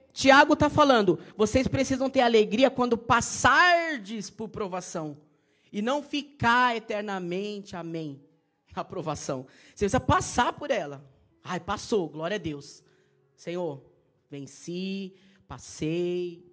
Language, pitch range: Portuguese, 155-200 Hz